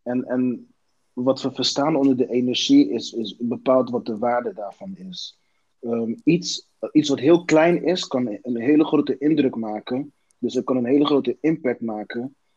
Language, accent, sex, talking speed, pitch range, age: Dutch, Dutch, male, 170 wpm, 120-155 Hz, 30-49